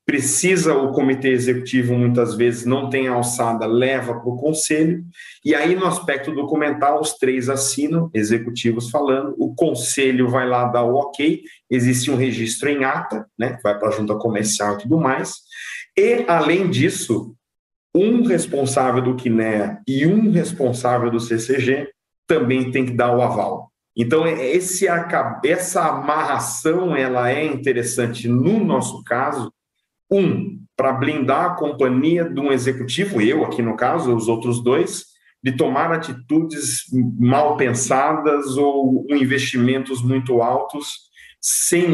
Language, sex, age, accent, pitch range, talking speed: Portuguese, male, 40-59, Brazilian, 125-160 Hz, 135 wpm